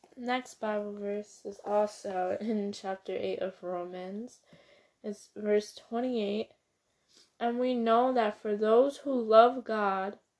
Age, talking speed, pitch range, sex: 10-29, 135 wpm, 195-225 Hz, female